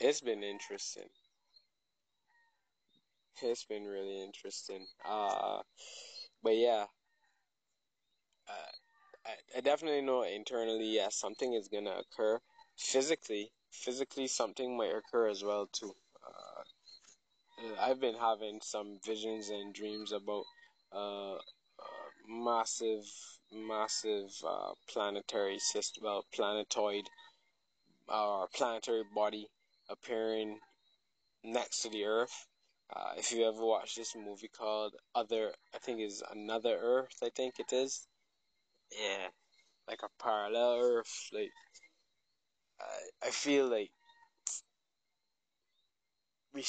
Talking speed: 110 wpm